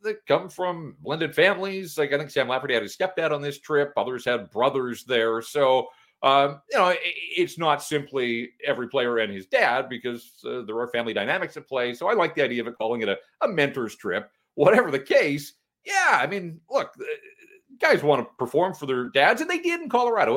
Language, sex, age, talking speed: English, male, 40-59, 210 wpm